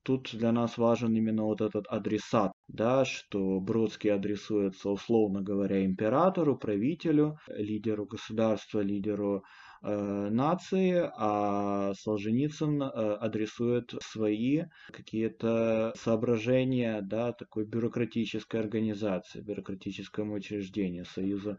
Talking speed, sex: 85 wpm, male